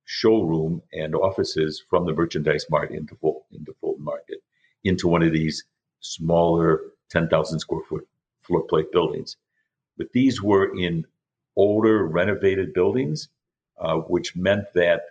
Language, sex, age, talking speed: English, male, 60-79, 130 wpm